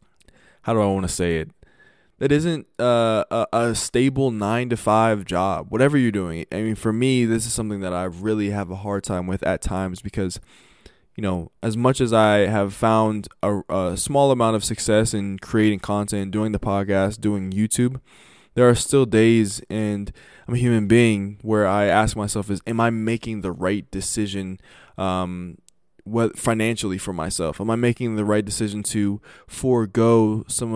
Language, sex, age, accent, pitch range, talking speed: English, male, 20-39, American, 100-115 Hz, 180 wpm